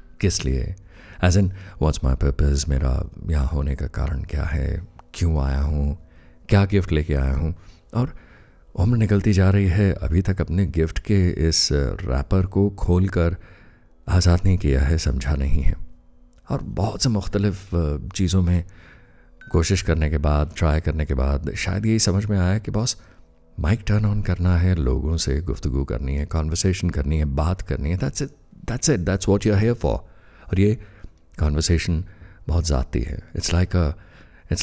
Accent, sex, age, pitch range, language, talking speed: native, male, 50-69, 75-95 Hz, Hindi, 170 wpm